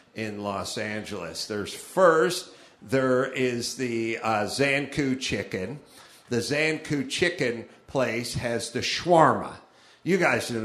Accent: American